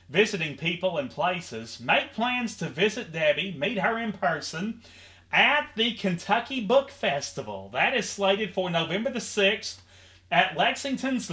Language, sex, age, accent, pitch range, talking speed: English, male, 30-49, American, 125-200 Hz, 145 wpm